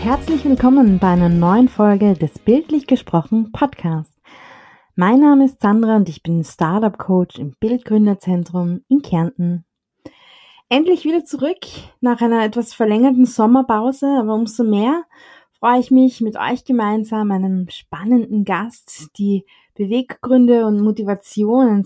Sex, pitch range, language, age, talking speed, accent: female, 190-245 Hz, German, 20-39, 130 wpm, German